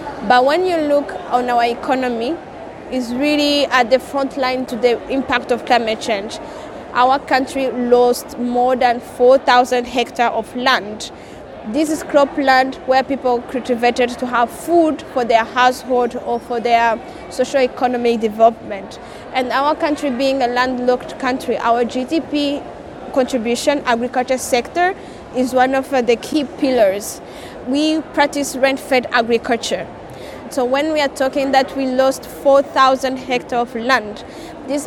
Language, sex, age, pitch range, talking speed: English, female, 20-39, 245-275 Hz, 140 wpm